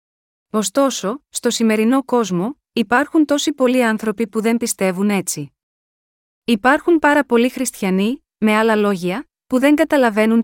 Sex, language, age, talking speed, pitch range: female, Greek, 30-49, 125 wpm, 195-245 Hz